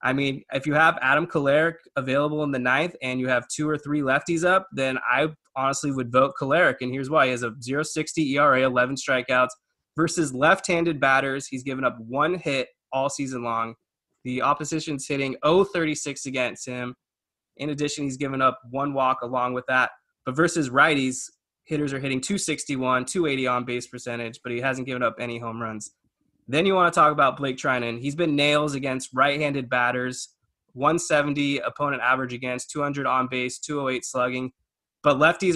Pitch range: 125-150 Hz